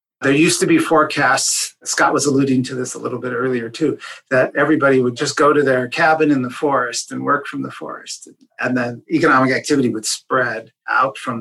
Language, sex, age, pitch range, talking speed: English, male, 40-59, 125-160 Hz, 205 wpm